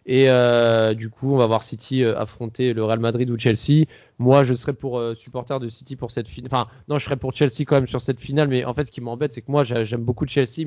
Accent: French